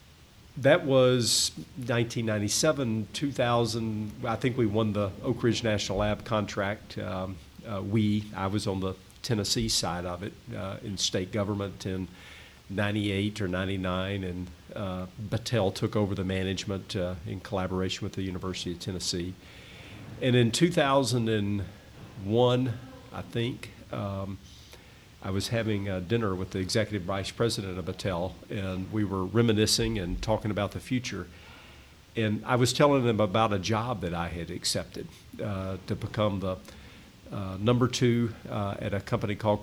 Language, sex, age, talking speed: English, male, 50-69, 150 wpm